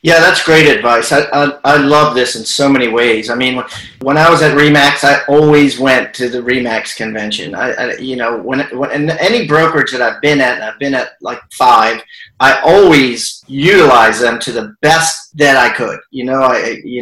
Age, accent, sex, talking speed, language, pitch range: 40-59, American, male, 210 wpm, English, 130-170 Hz